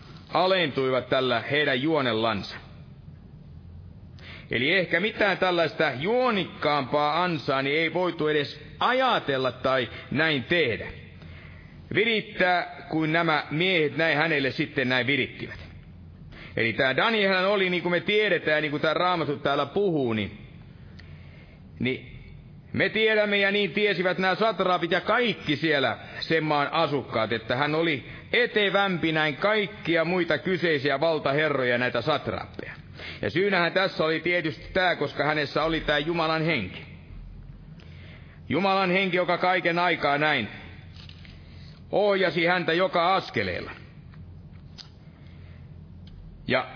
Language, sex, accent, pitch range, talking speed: Finnish, male, native, 125-180 Hz, 115 wpm